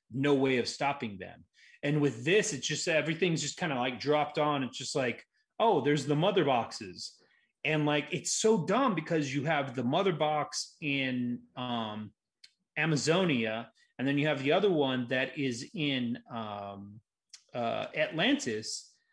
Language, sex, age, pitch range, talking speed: English, male, 30-49, 140-190 Hz, 165 wpm